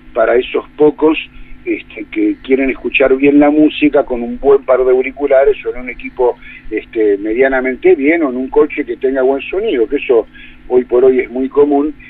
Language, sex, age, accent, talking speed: Spanish, male, 50-69, Argentinian, 195 wpm